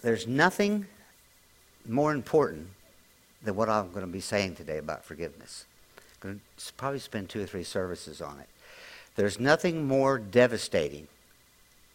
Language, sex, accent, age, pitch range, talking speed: English, male, American, 60-79, 95-135 Hz, 145 wpm